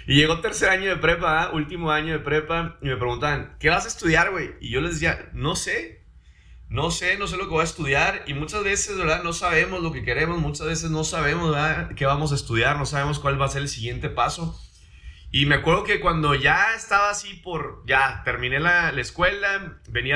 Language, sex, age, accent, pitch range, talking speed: Spanish, male, 30-49, Mexican, 110-150 Hz, 225 wpm